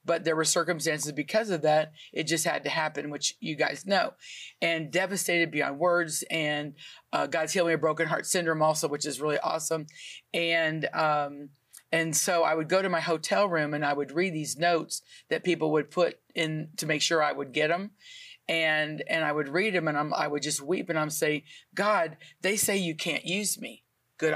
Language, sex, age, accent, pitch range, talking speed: English, female, 50-69, American, 155-185 Hz, 210 wpm